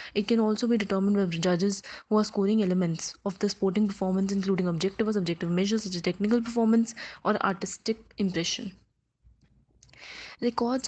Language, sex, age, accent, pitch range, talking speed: English, female, 20-39, Indian, 190-225 Hz, 155 wpm